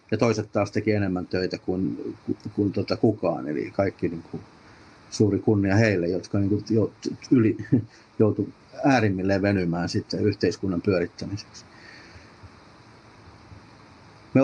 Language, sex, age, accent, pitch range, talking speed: Finnish, male, 50-69, native, 100-115 Hz, 115 wpm